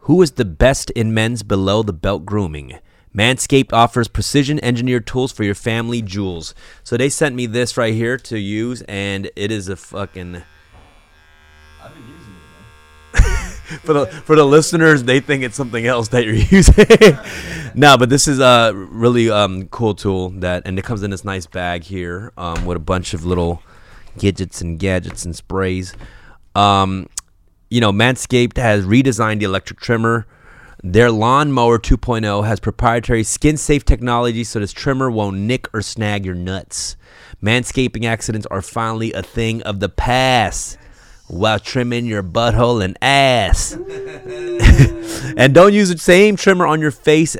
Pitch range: 95-125 Hz